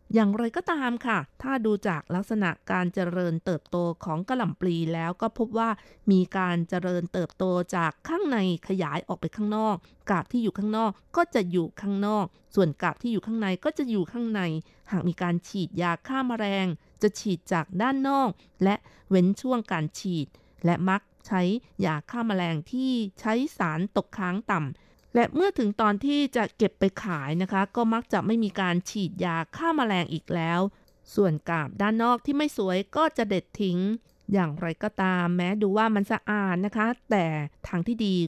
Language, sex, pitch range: Thai, female, 175-225 Hz